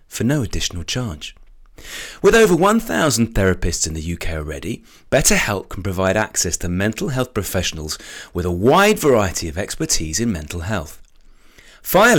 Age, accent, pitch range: 30-49, British, 90-150 Hz